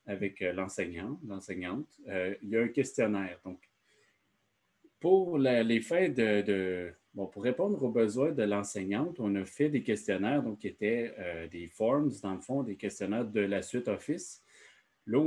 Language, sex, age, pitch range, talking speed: French, male, 30-49, 100-125 Hz, 175 wpm